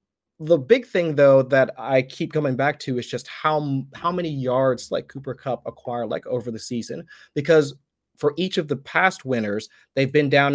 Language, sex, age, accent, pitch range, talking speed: English, male, 30-49, American, 120-145 Hz, 195 wpm